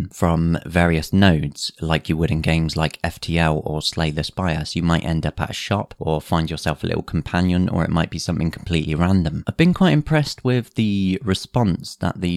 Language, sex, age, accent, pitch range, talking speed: English, male, 30-49, British, 80-105 Hz, 210 wpm